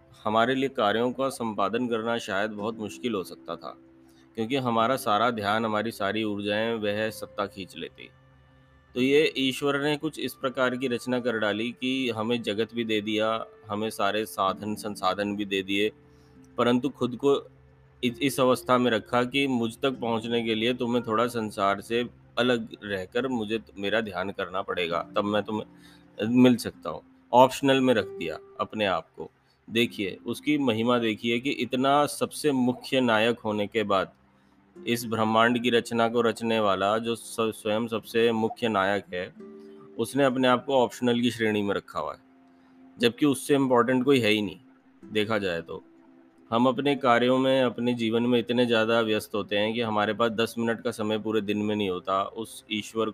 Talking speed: 175 wpm